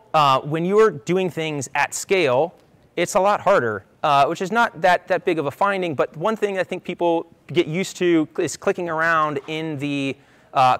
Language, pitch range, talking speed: English, 135-175 Hz, 200 wpm